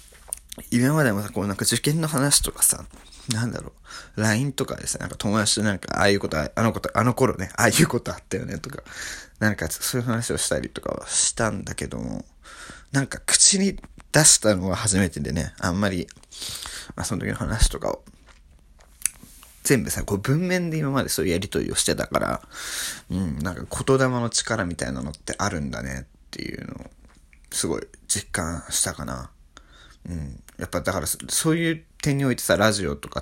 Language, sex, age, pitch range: Japanese, male, 20-39, 75-120 Hz